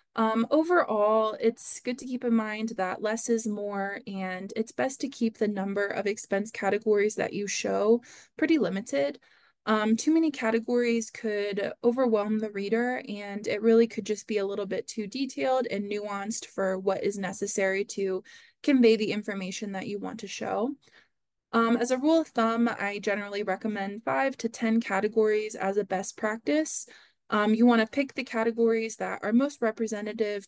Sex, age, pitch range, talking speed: female, 20-39, 200-235 Hz, 175 wpm